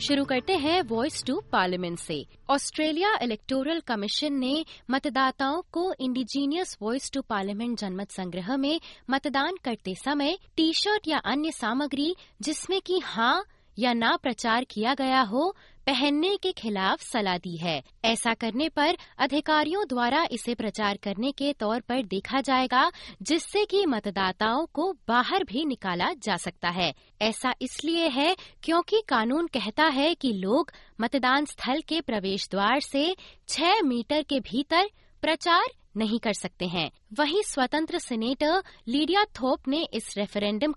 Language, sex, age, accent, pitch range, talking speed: Hindi, female, 20-39, native, 215-315 Hz, 145 wpm